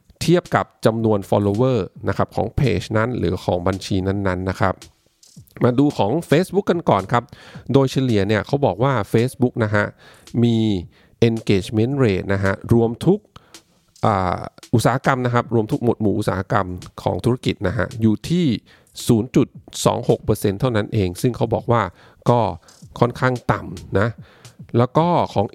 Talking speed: 30 wpm